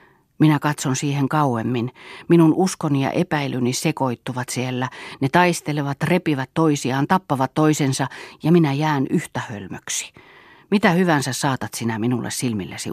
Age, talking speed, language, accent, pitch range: 40-59, 125 wpm, Finnish, native, 120-155 Hz